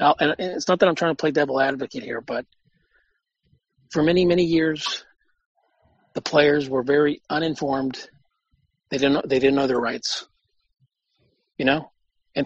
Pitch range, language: 135-165 Hz, English